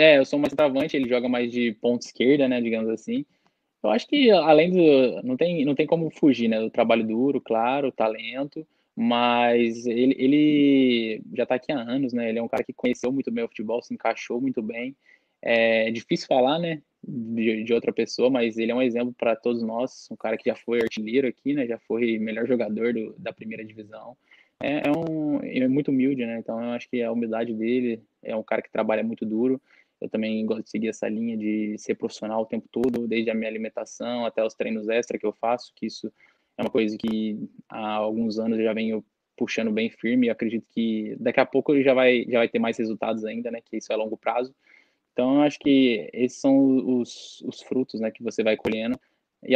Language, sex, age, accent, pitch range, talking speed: Portuguese, male, 10-29, Brazilian, 115-135 Hz, 225 wpm